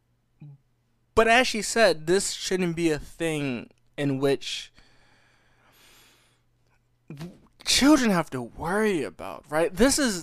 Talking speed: 110 wpm